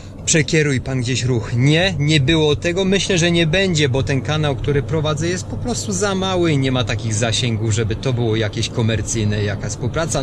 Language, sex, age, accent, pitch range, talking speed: Polish, male, 30-49, native, 115-150 Hz, 200 wpm